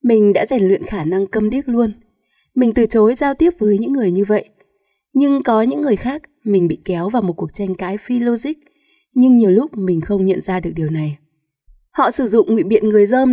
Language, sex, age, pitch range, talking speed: Vietnamese, female, 20-39, 190-245 Hz, 230 wpm